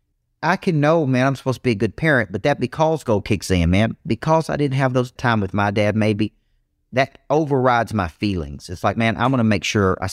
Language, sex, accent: English, male, American